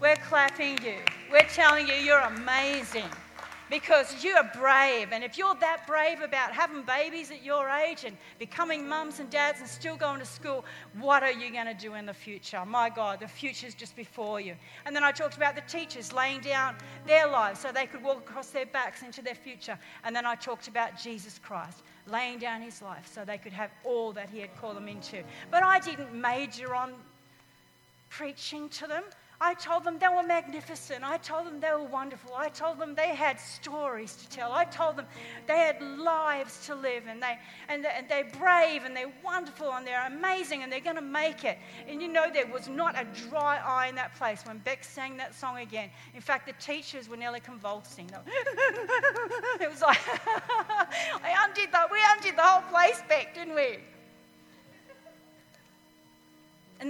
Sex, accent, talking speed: female, Australian, 200 wpm